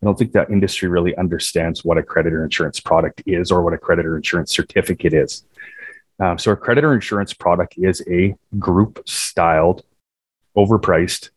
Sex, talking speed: male, 160 wpm